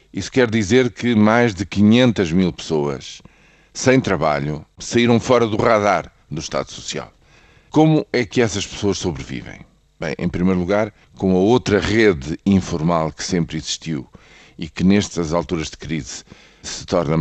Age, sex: 50-69, male